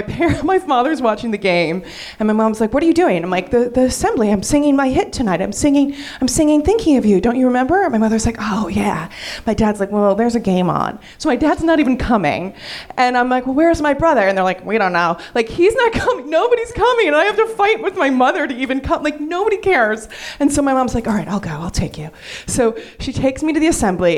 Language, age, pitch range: English, 30-49, 185-260 Hz